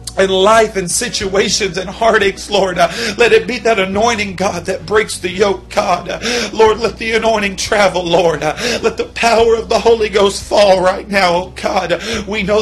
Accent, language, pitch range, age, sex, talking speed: American, English, 195-225 Hz, 40-59, male, 190 wpm